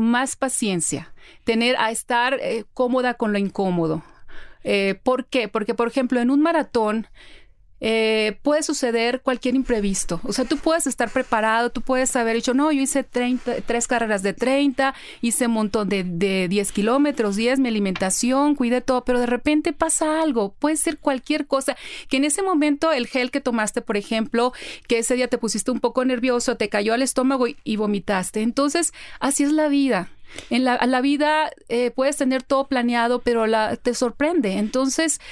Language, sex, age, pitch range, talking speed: Spanish, female, 30-49, 220-270 Hz, 180 wpm